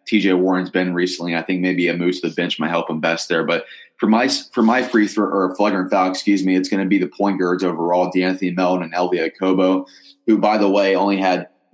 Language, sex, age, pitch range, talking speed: English, male, 20-39, 90-100 Hz, 250 wpm